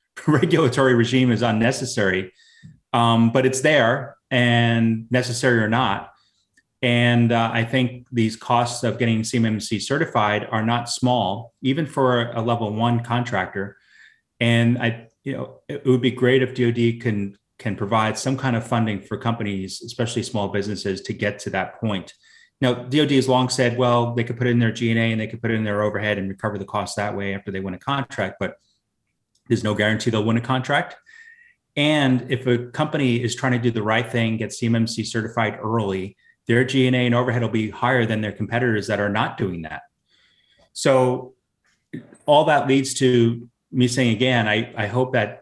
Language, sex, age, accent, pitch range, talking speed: English, male, 30-49, American, 105-125 Hz, 185 wpm